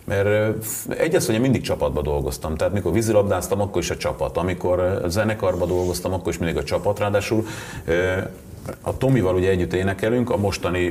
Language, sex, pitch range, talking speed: Hungarian, male, 85-115 Hz, 165 wpm